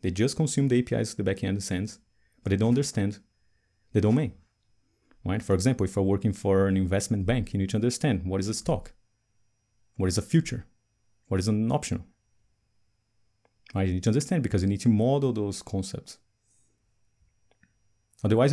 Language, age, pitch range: English, 30-49, 105-120 Hz